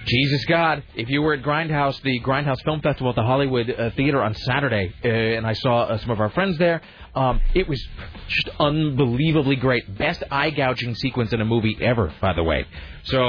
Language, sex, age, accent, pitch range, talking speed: English, male, 30-49, American, 115-150 Hz, 210 wpm